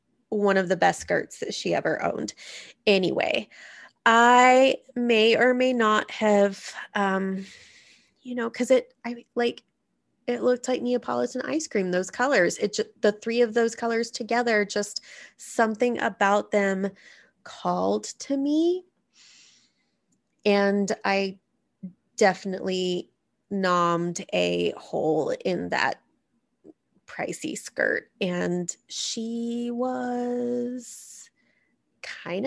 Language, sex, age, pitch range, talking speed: English, female, 20-39, 185-240 Hz, 110 wpm